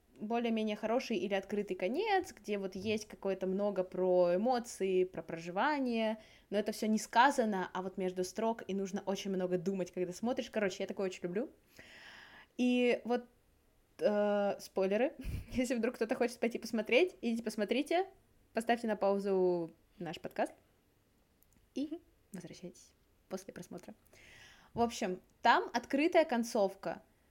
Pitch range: 195-265 Hz